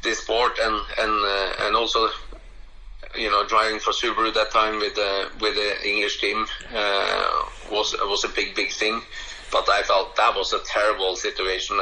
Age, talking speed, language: 30-49, 180 wpm, English